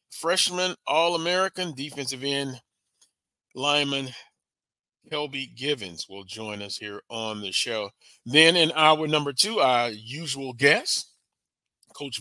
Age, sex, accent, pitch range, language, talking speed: 40-59, male, American, 120-155 Hz, English, 115 wpm